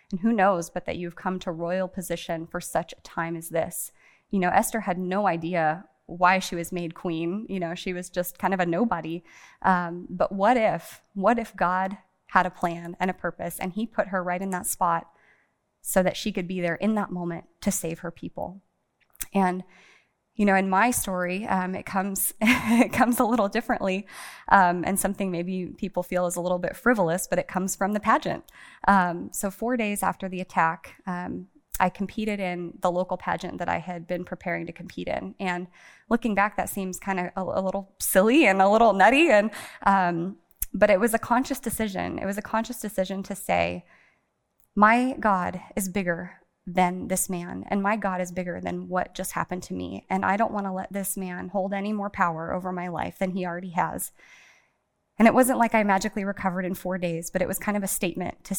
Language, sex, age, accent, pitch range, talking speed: English, female, 20-39, American, 180-205 Hz, 215 wpm